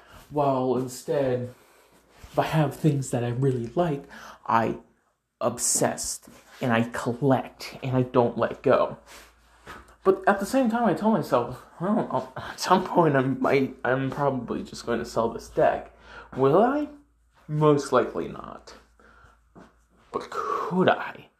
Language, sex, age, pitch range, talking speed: English, male, 20-39, 120-160 Hz, 140 wpm